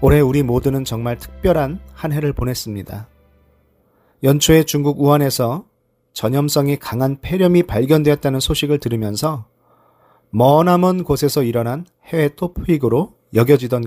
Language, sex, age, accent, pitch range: Korean, male, 40-59, native, 115-160 Hz